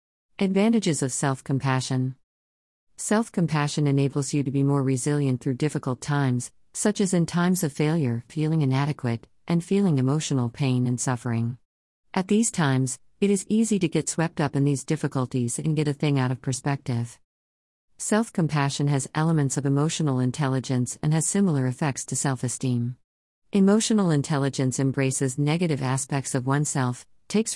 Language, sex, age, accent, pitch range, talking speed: English, female, 50-69, American, 130-160 Hz, 145 wpm